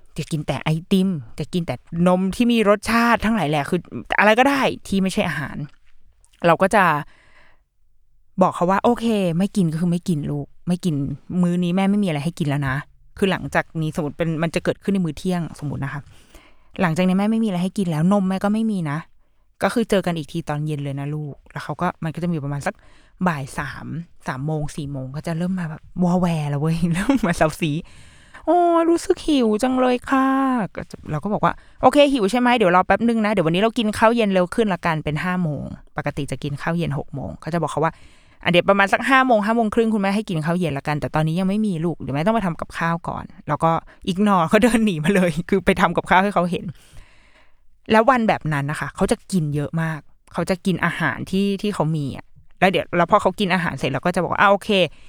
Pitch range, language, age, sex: 155-205 Hz, Thai, 20-39, female